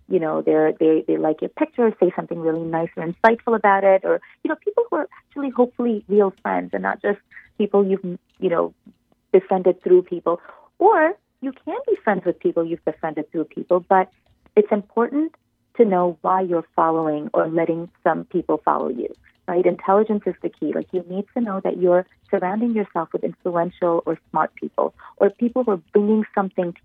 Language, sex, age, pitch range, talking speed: English, female, 40-59, 165-220 Hz, 190 wpm